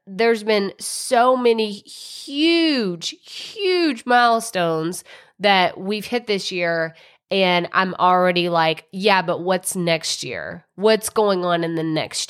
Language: English